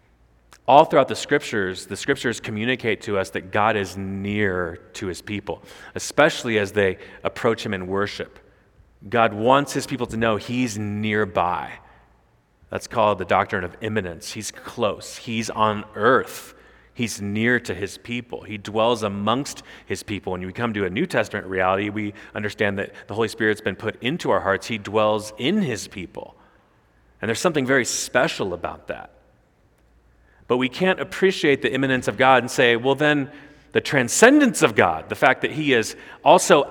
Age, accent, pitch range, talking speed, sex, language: 30-49, American, 100-140 Hz, 170 wpm, male, English